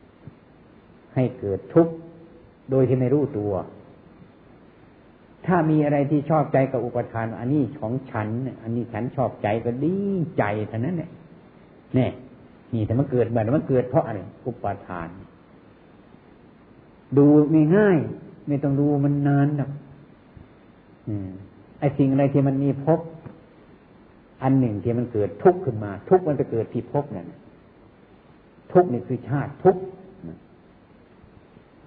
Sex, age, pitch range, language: male, 60-79, 115-155 Hz, Thai